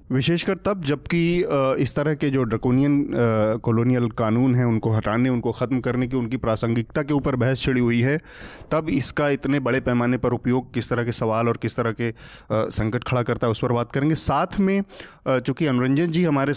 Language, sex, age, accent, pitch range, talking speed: Hindi, male, 30-49, native, 115-145 Hz, 195 wpm